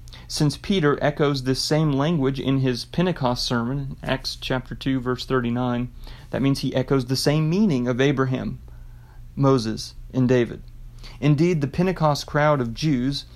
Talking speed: 150 wpm